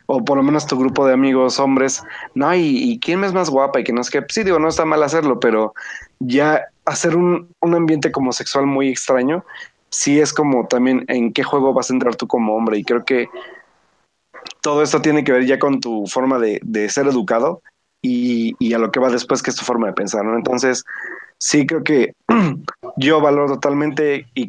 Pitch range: 120-145 Hz